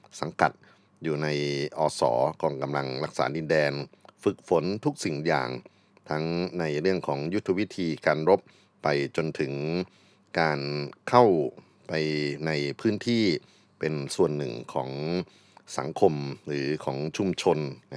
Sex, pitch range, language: male, 75-90 Hz, Thai